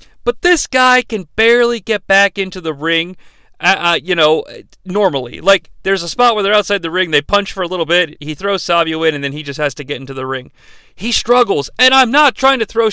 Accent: American